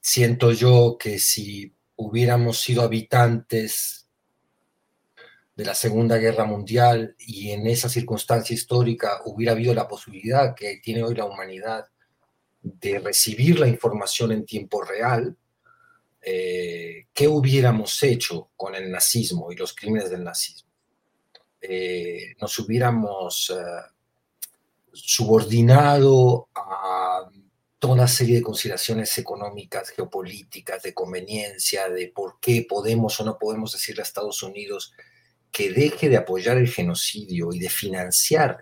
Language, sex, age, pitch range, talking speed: Spanish, male, 40-59, 105-125 Hz, 125 wpm